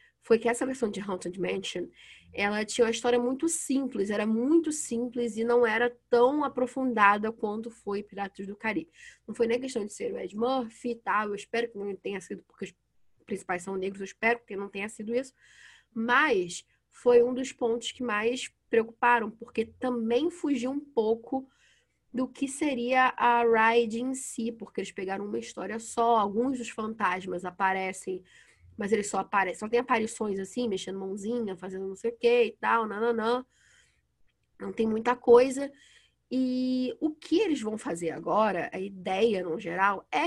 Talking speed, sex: 180 wpm, female